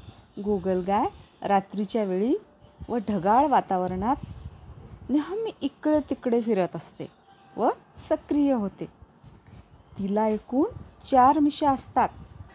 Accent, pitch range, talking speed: native, 190-250 Hz, 100 wpm